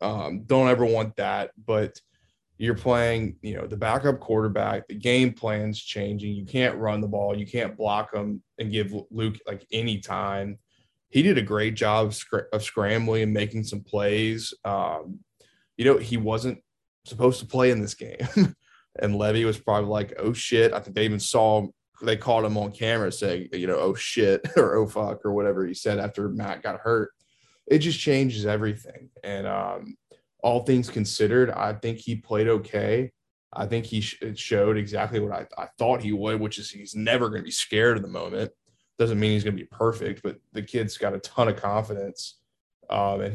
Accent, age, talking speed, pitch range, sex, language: American, 20-39, 200 wpm, 105-115 Hz, male, English